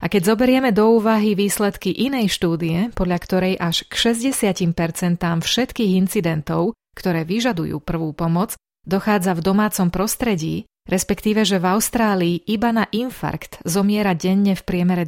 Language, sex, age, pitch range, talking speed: Slovak, female, 30-49, 175-210 Hz, 135 wpm